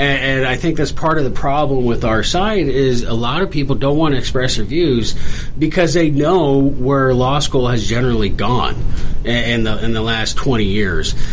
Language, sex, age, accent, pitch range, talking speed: English, male, 40-59, American, 120-150 Hz, 200 wpm